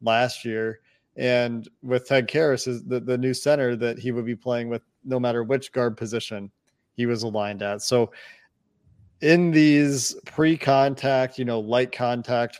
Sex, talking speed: male, 160 wpm